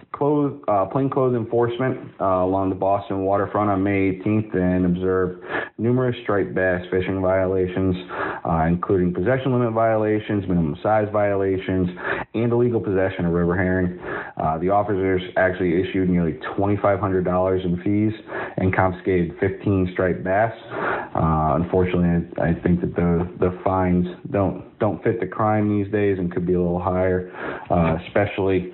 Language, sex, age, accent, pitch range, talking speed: English, male, 30-49, American, 90-105 Hz, 150 wpm